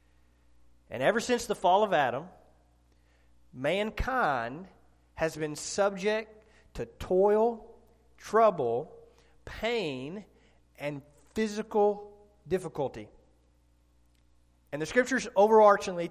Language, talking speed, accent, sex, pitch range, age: English, 80 wpm, American, male, 145-205 Hz, 40-59